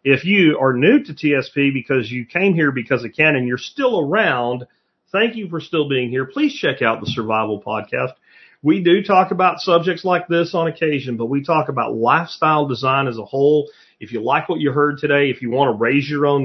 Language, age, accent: English, 40-59, American